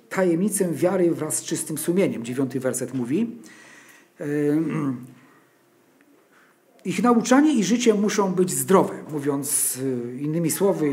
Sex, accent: male, native